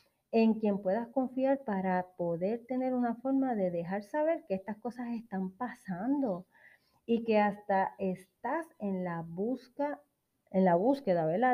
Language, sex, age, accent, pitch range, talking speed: Spanish, female, 30-49, American, 180-235 Hz, 130 wpm